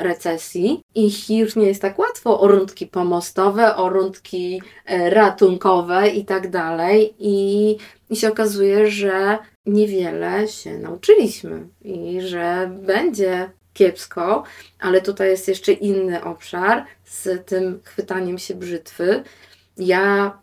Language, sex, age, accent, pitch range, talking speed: Polish, female, 20-39, native, 190-215 Hz, 120 wpm